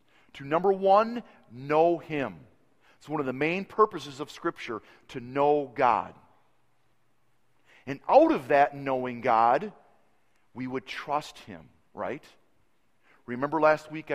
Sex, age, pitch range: male, 40-59, 100-140 Hz